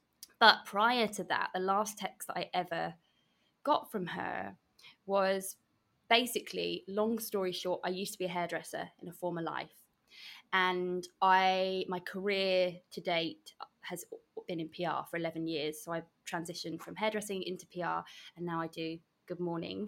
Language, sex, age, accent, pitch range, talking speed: English, female, 20-39, British, 175-200 Hz, 160 wpm